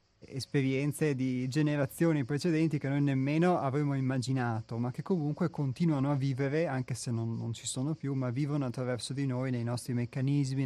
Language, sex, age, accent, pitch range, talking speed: Italian, male, 30-49, native, 120-145 Hz, 170 wpm